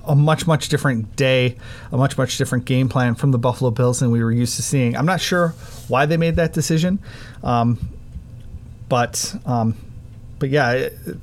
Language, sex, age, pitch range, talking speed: English, male, 30-49, 120-145 Hz, 185 wpm